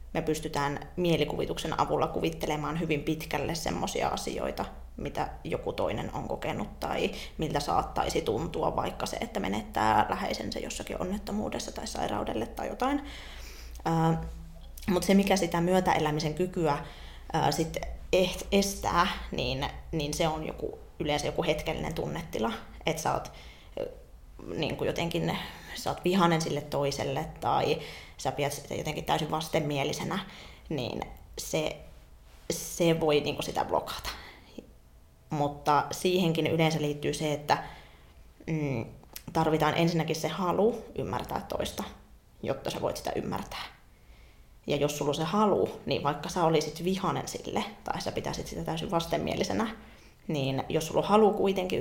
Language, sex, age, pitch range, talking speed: Finnish, female, 20-39, 145-180 Hz, 120 wpm